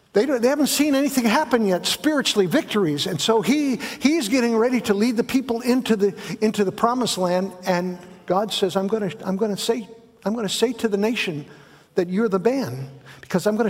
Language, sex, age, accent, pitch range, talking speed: English, male, 60-79, American, 155-220 Hz, 220 wpm